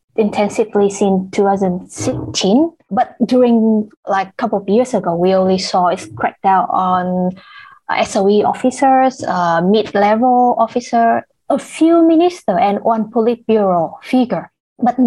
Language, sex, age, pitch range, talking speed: English, female, 20-39, 190-230 Hz, 125 wpm